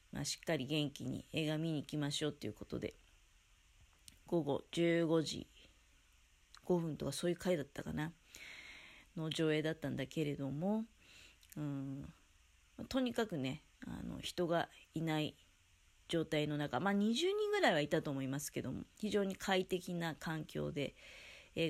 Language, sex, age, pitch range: Japanese, female, 30-49, 135-185 Hz